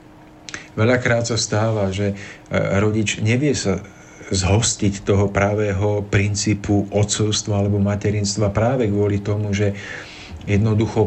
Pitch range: 100-110 Hz